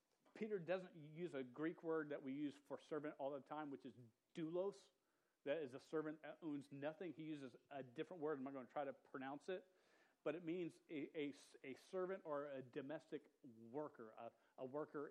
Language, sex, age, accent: English, male, 40-59, American